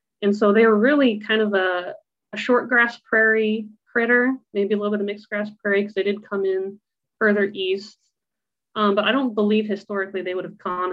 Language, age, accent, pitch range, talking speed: English, 30-49, American, 185-215 Hz, 210 wpm